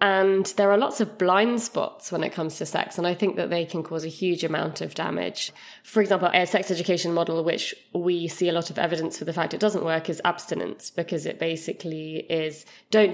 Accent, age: British, 20-39